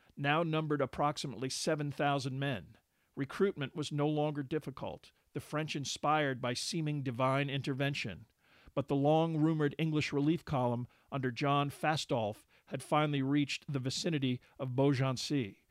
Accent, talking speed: American, 125 wpm